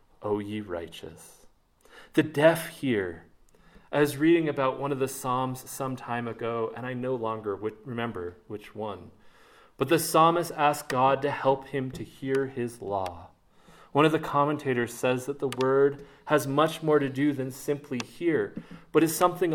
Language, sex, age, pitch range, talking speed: English, male, 30-49, 110-145 Hz, 170 wpm